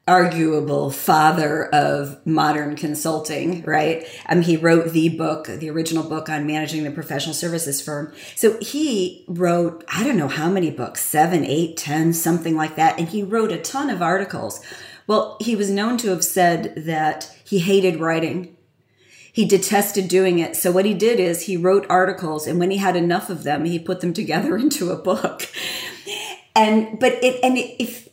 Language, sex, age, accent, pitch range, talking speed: English, female, 40-59, American, 160-205 Hz, 180 wpm